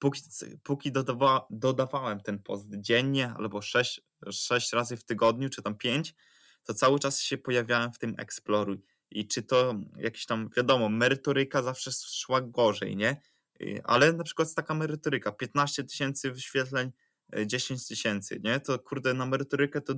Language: Polish